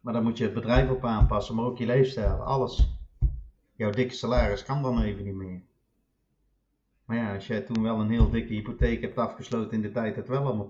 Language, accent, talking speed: Dutch, Dutch, 225 wpm